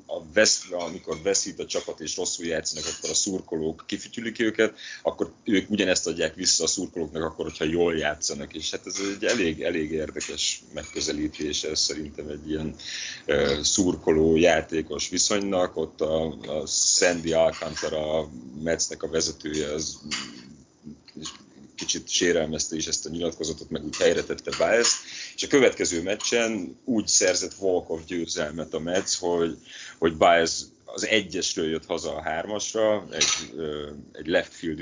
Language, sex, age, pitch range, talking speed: Hungarian, male, 30-49, 80-95 Hz, 140 wpm